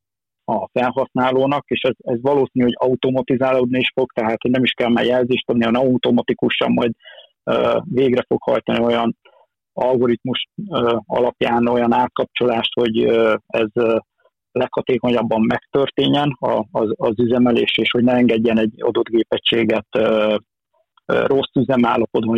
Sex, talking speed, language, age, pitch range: male, 135 wpm, Hungarian, 50-69, 115-130 Hz